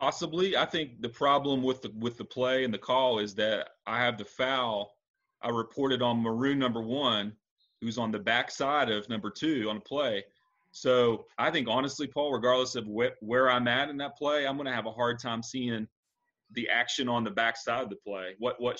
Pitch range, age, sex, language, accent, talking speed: 110-125 Hz, 30-49, male, English, American, 215 wpm